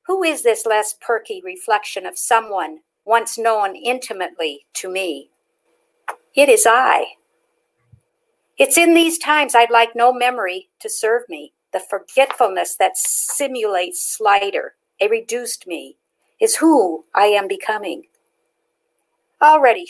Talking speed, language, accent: 125 wpm, English, American